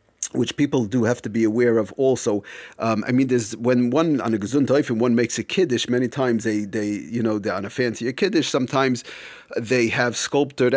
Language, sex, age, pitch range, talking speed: English, male, 30-49, 115-145 Hz, 210 wpm